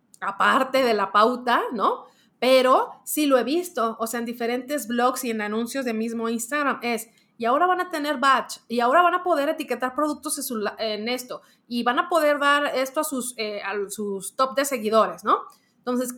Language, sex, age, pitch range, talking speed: Spanish, female, 30-49, 215-270 Hz, 190 wpm